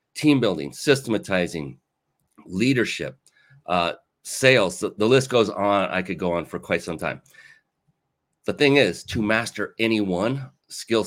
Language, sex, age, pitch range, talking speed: English, male, 30-49, 90-110 Hz, 140 wpm